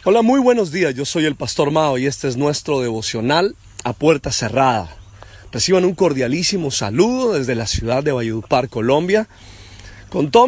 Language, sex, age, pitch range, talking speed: Spanish, male, 40-59, 115-165 Hz, 165 wpm